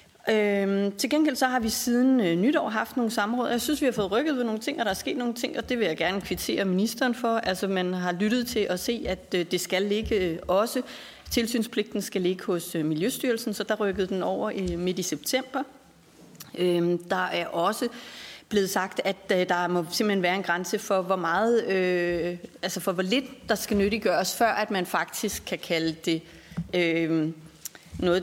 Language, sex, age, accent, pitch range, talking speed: Danish, female, 30-49, native, 180-235 Hz, 205 wpm